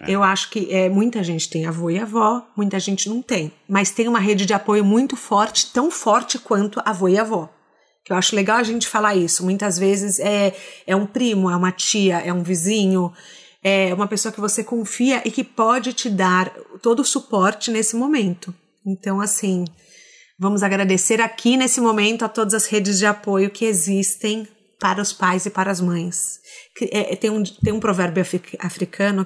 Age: 30-49